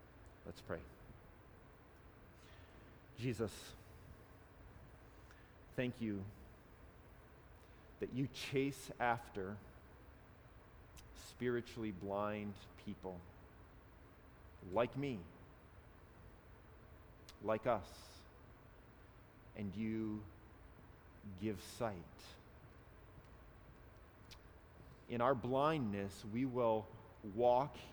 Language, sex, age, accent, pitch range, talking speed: English, male, 40-59, American, 100-120 Hz, 55 wpm